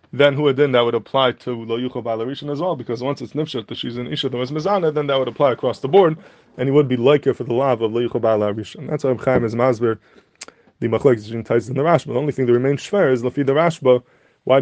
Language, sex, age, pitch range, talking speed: English, male, 20-39, 120-140 Hz, 250 wpm